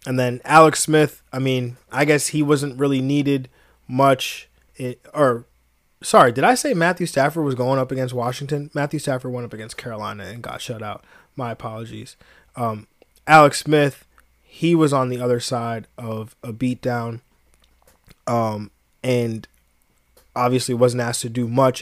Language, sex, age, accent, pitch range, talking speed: English, male, 20-39, American, 115-140 Hz, 160 wpm